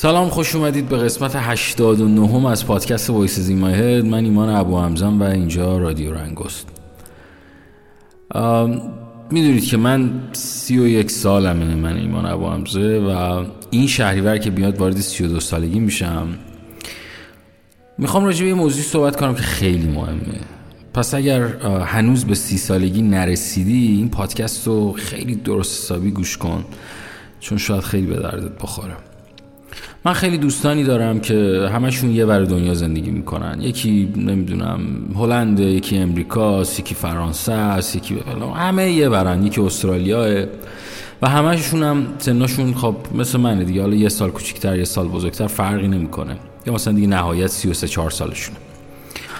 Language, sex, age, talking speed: Persian, male, 30-49, 145 wpm